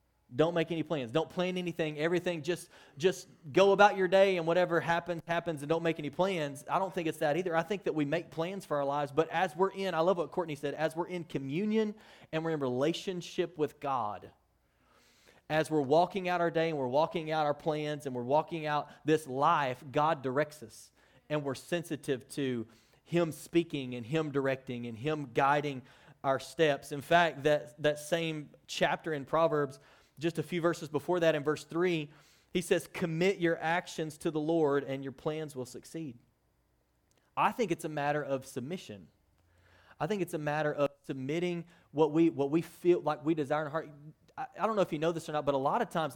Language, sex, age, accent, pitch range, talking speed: English, male, 30-49, American, 140-170 Hz, 210 wpm